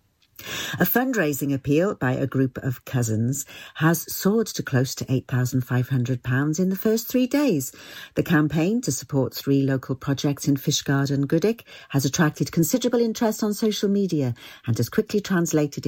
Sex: female